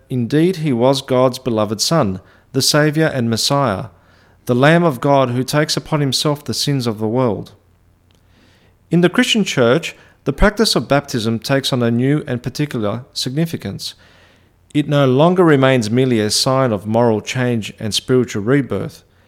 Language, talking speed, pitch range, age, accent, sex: English, 160 wpm, 105-150 Hz, 40-59, Australian, male